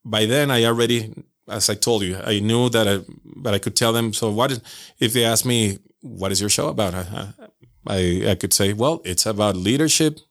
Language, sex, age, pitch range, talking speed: English, male, 30-49, 110-140 Hz, 205 wpm